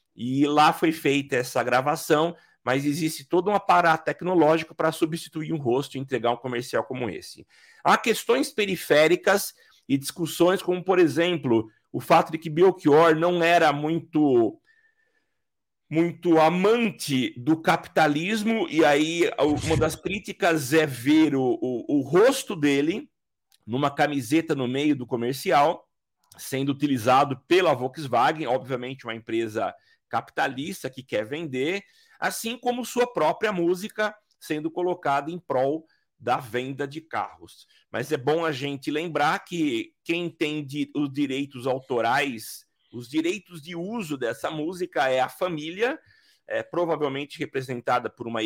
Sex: male